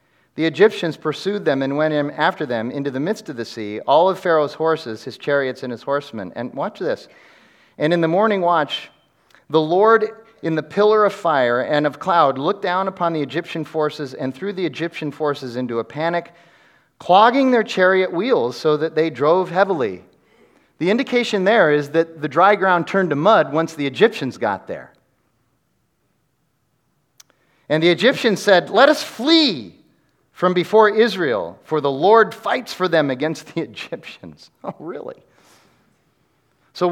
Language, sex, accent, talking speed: English, male, American, 165 wpm